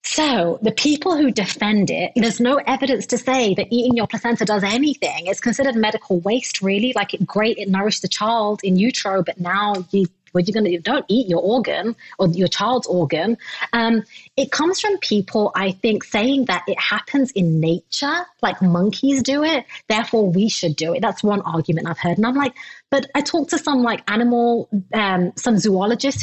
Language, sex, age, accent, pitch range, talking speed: English, female, 30-49, British, 190-245 Hz, 195 wpm